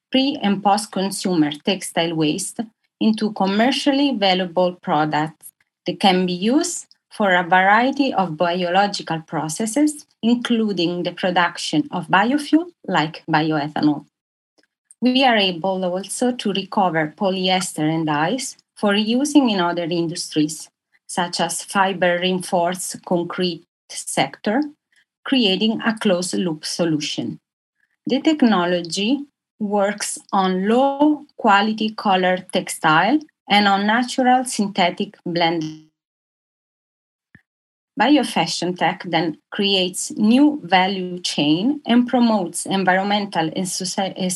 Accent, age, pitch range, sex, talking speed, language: Italian, 30-49, 175-235 Hz, female, 100 wpm, English